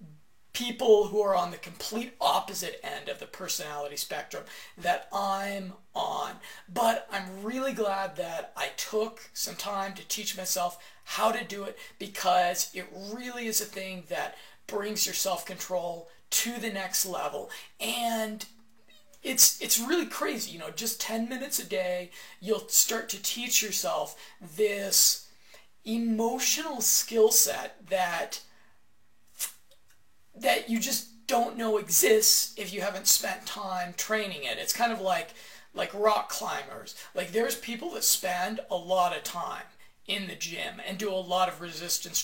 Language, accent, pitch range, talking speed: English, American, 185-225 Hz, 150 wpm